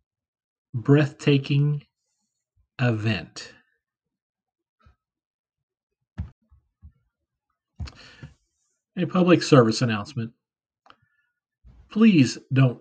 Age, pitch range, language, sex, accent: 40-59, 130-210 Hz, English, male, American